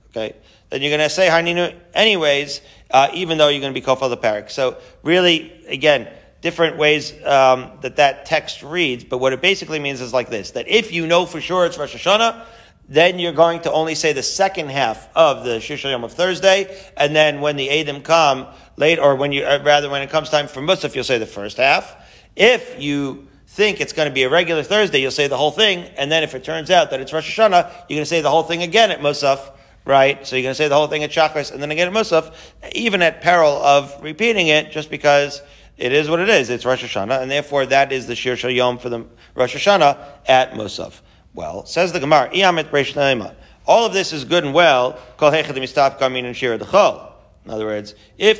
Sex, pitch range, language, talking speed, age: male, 130-165 Hz, English, 220 wpm, 40-59